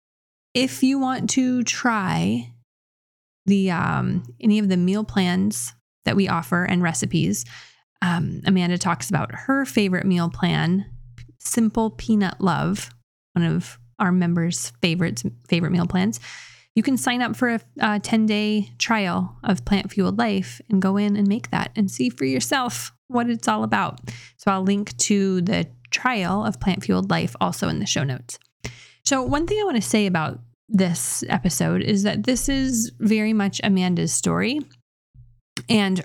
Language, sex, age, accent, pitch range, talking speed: English, female, 20-39, American, 170-220 Hz, 160 wpm